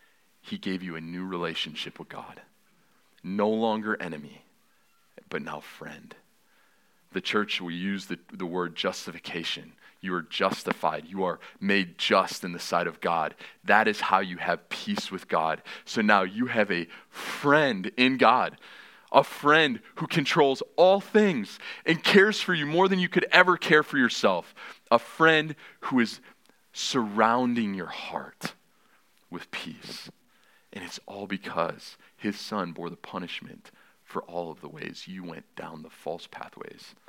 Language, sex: English, male